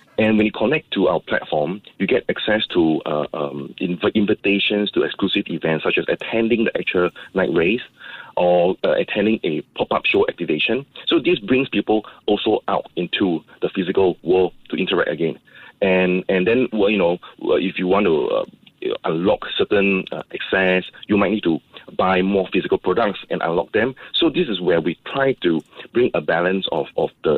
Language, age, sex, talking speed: English, 30-49, male, 185 wpm